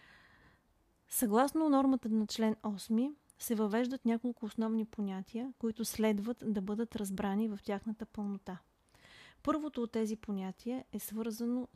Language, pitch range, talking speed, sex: Bulgarian, 210-240 Hz, 120 wpm, female